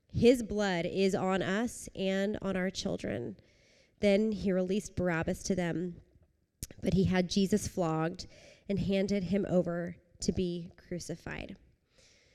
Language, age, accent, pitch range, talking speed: English, 20-39, American, 175-205 Hz, 130 wpm